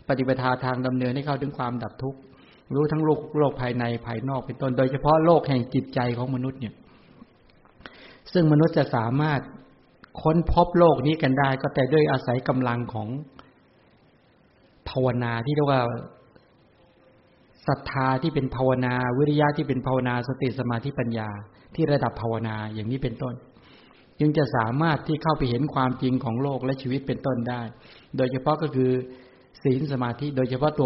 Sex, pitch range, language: male, 125-150 Hz, English